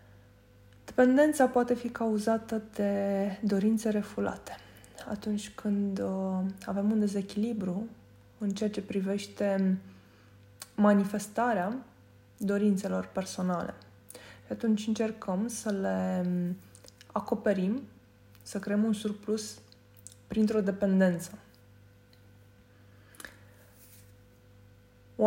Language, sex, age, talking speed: Romanian, female, 20-39, 75 wpm